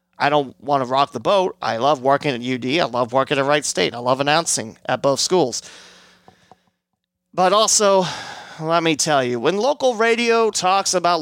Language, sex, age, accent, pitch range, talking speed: English, male, 30-49, American, 175-225 Hz, 185 wpm